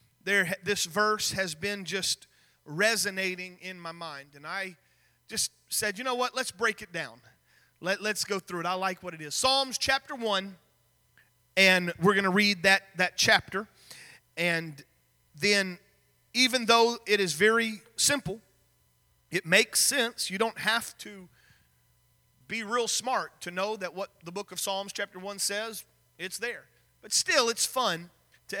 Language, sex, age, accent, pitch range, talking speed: English, male, 30-49, American, 175-235 Hz, 165 wpm